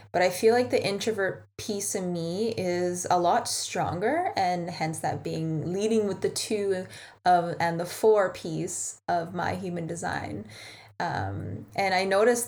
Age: 10-29